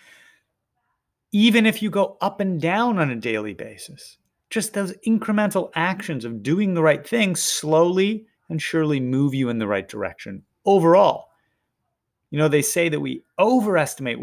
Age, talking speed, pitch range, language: 30-49, 155 wpm, 130-205 Hz, English